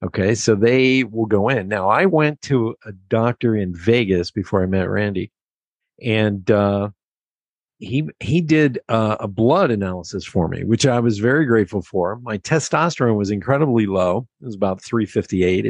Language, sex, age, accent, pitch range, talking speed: English, male, 50-69, American, 100-125 Hz, 170 wpm